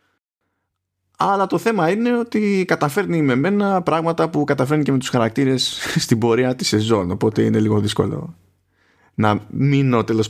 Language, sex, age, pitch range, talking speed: Greek, male, 20-39, 95-130 Hz, 150 wpm